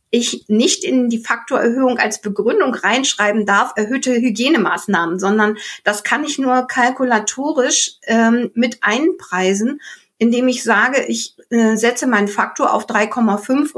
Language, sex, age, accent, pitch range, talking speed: German, female, 50-69, German, 215-255 Hz, 130 wpm